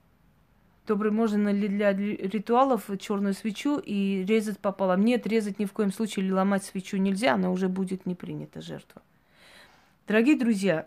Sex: female